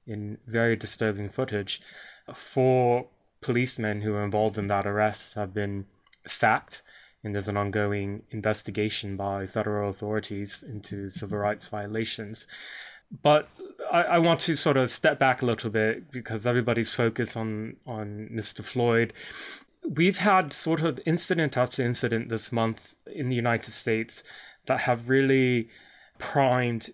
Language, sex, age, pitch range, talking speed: English, male, 20-39, 110-125 Hz, 140 wpm